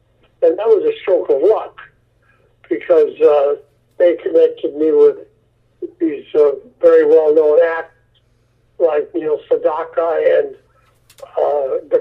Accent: American